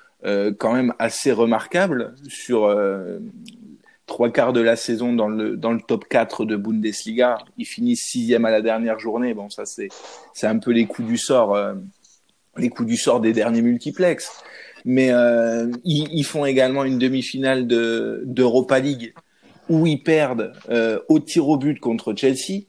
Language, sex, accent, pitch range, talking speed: French, male, French, 120-155 Hz, 175 wpm